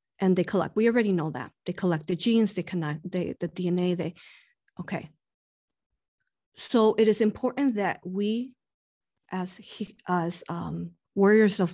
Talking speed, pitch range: 155 wpm, 175-215 Hz